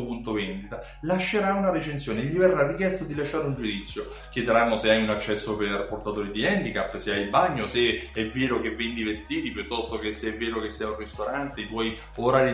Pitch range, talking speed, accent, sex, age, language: 115-175 Hz, 205 wpm, native, male, 30-49, Italian